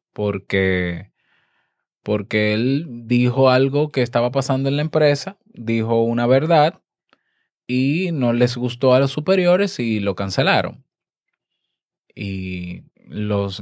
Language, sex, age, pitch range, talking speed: Spanish, male, 20-39, 110-135 Hz, 115 wpm